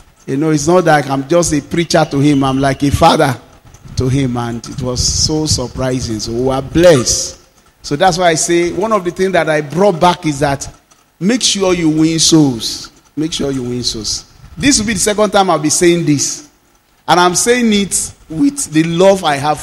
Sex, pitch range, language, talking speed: male, 135-175 Hz, English, 215 wpm